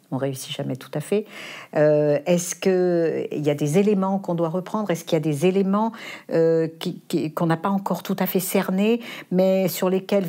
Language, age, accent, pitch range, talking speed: French, 60-79, French, 160-210 Hz, 210 wpm